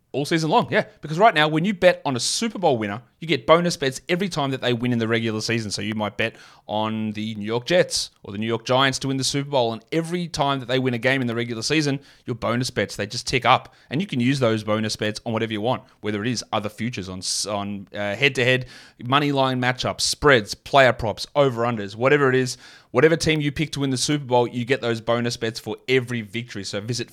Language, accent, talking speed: English, Australian, 255 wpm